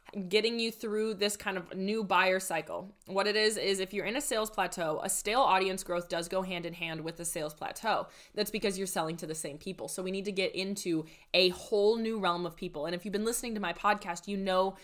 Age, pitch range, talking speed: 20-39, 175-205 Hz, 250 wpm